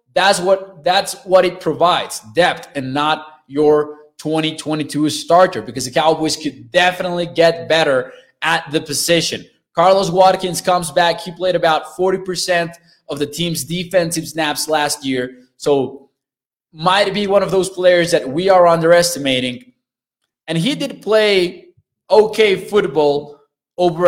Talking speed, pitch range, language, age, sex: 135 wpm, 150-185 Hz, English, 20-39, male